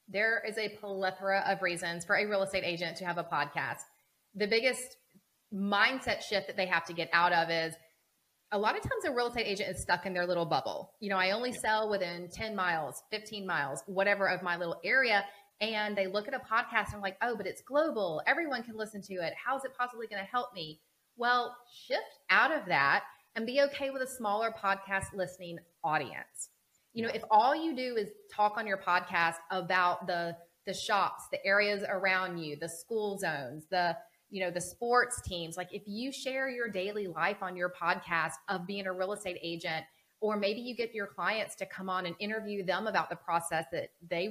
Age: 30-49